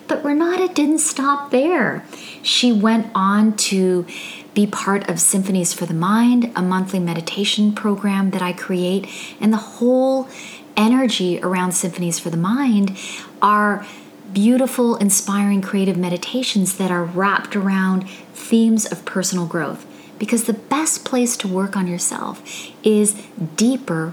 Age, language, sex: 30-49, English, female